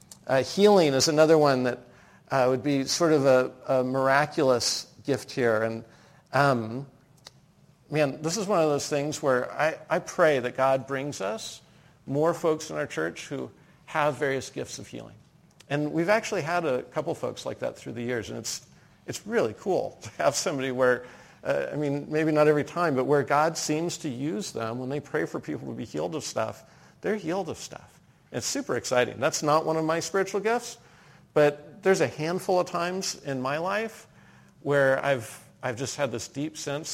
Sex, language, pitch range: male, English, 130-155 Hz